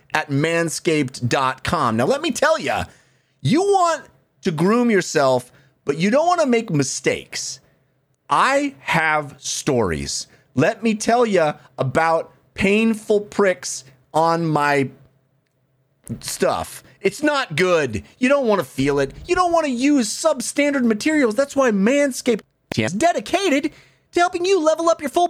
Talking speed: 140 wpm